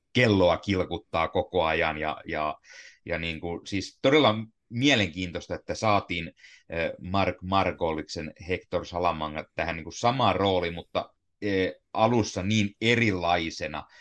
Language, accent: Finnish, native